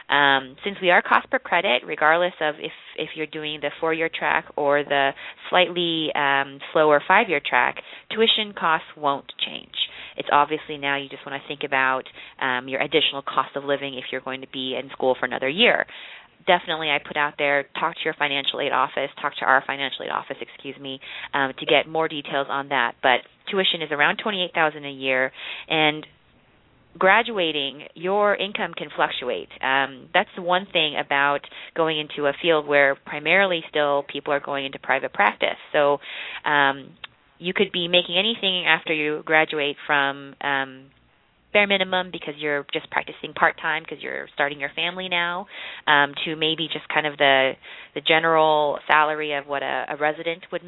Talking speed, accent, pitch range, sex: 180 wpm, American, 140-165 Hz, female